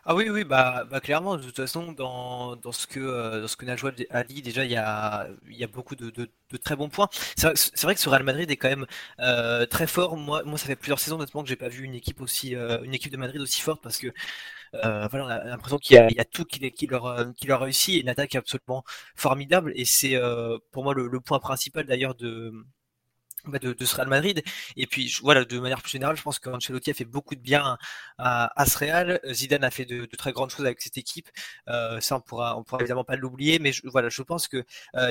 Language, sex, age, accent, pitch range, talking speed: French, male, 20-39, French, 125-140 Hz, 270 wpm